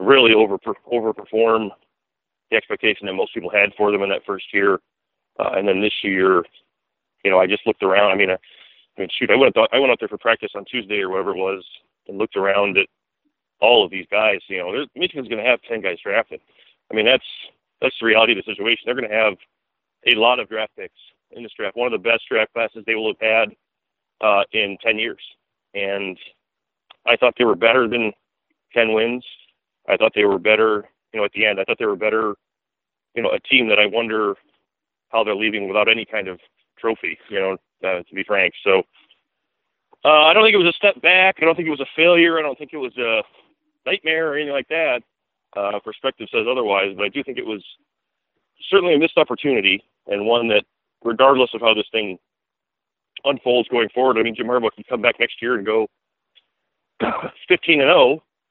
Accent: American